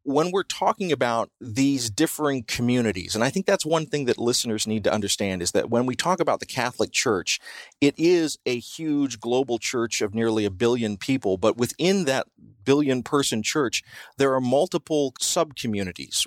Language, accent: English, American